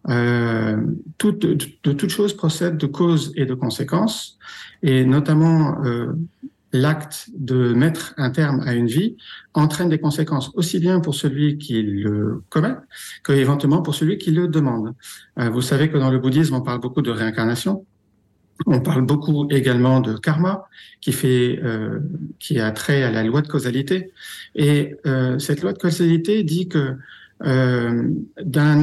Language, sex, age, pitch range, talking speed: French, male, 50-69, 130-165 Hz, 160 wpm